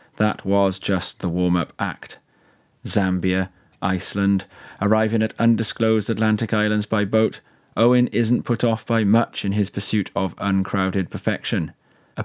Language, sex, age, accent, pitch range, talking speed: English, male, 30-49, British, 95-115 Hz, 135 wpm